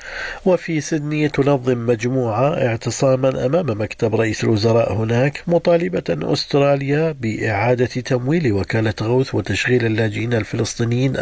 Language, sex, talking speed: Arabic, male, 100 wpm